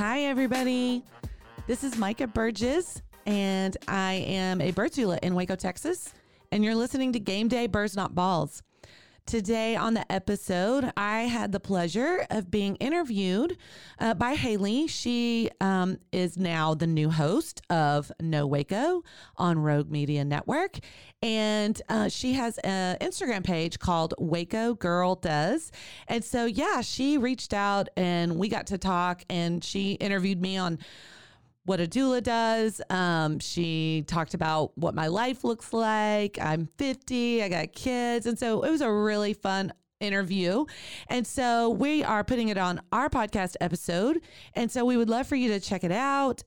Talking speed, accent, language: 160 wpm, American, English